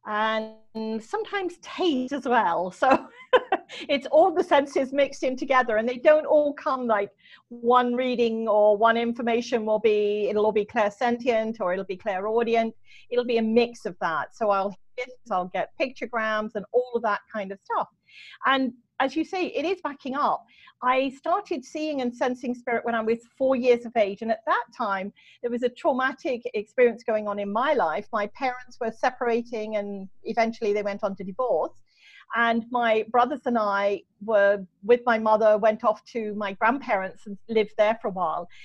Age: 40-59